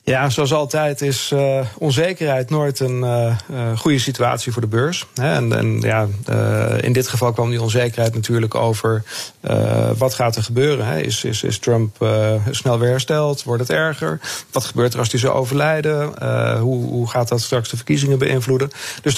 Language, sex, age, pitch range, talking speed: Dutch, male, 40-59, 110-130 Hz, 190 wpm